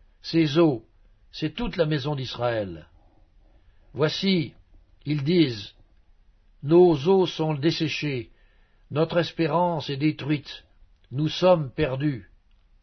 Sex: male